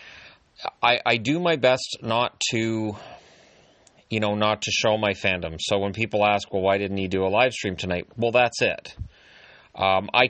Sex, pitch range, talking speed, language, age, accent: male, 100-115 Hz, 185 wpm, English, 30-49, American